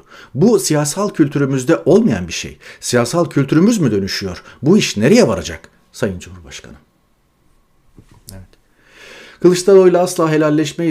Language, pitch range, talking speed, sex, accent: Turkish, 100-125 Hz, 110 wpm, male, native